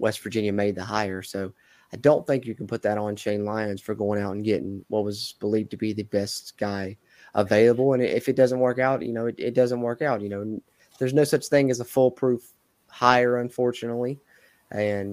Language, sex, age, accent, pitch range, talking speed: English, male, 20-39, American, 105-125 Hz, 220 wpm